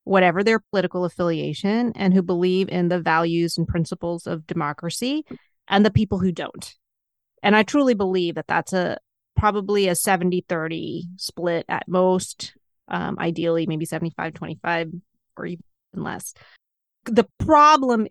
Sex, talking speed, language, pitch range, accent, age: female, 135 wpm, English, 180-230 Hz, American, 30-49